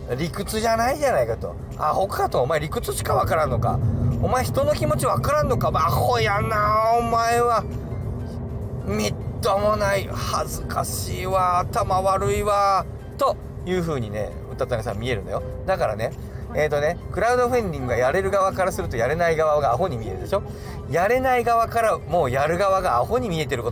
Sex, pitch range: male, 115-180 Hz